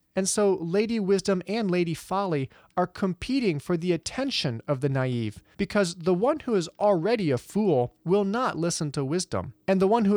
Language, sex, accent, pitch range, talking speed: English, male, American, 150-210 Hz, 190 wpm